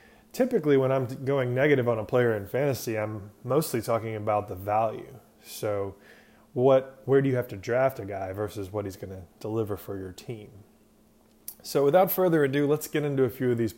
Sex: male